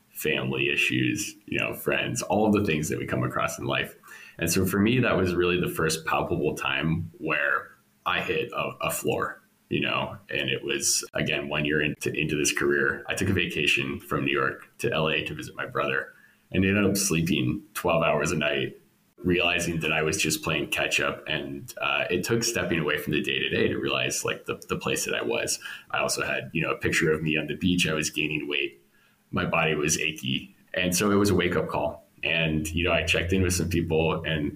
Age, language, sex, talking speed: 20-39, English, male, 225 wpm